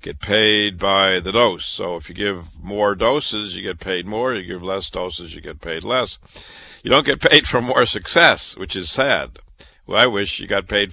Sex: male